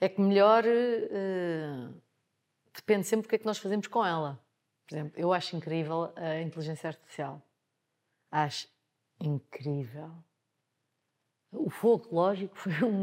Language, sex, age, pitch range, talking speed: Portuguese, female, 30-49, 155-195 Hz, 135 wpm